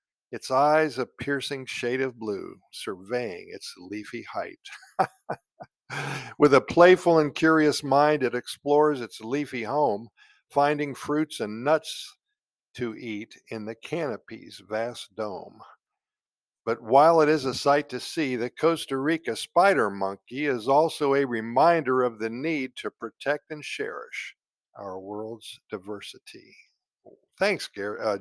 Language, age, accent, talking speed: English, 50-69, American, 135 wpm